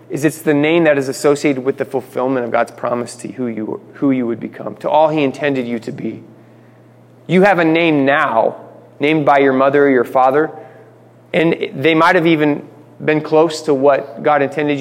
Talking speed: 205 wpm